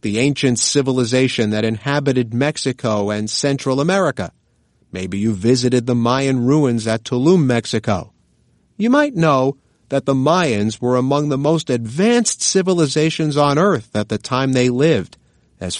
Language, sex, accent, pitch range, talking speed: English, male, American, 120-170 Hz, 145 wpm